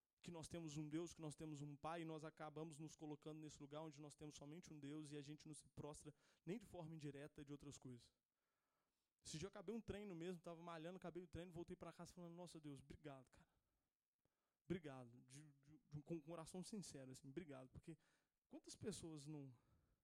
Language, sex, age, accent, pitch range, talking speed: Portuguese, male, 20-39, Brazilian, 150-200 Hz, 205 wpm